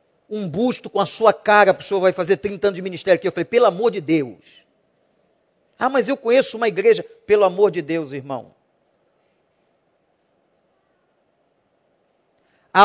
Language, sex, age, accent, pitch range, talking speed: Portuguese, male, 40-59, Brazilian, 165-225 Hz, 155 wpm